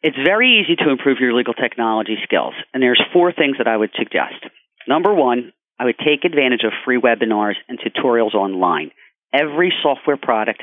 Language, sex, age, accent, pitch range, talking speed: English, male, 40-59, American, 115-150 Hz, 180 wpm